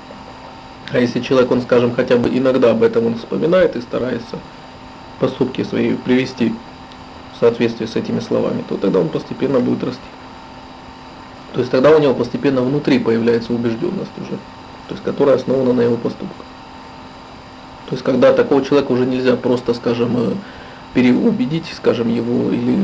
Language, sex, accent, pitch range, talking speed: Russian, male, native, 120-135 Hz, 145 wpm